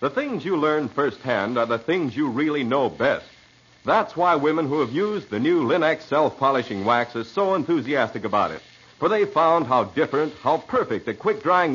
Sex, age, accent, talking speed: male, 60-79, American, 190 wpm